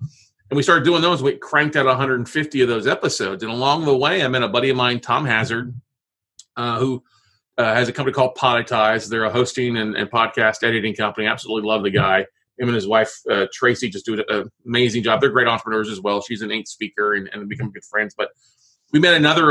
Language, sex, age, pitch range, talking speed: English, male, 30-49, 115-145 Hz, 225 wpm